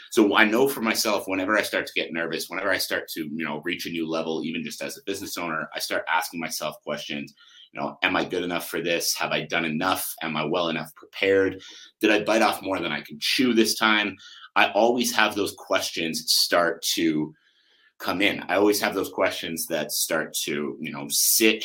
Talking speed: 220 wpm